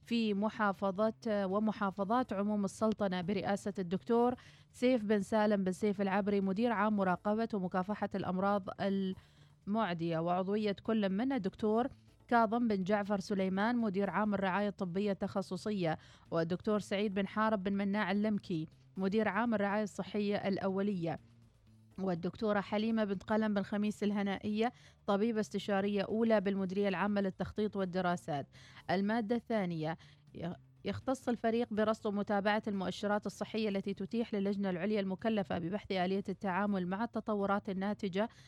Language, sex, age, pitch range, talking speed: Arabic, female, 30-49, 190-215 Hz, 120 wpm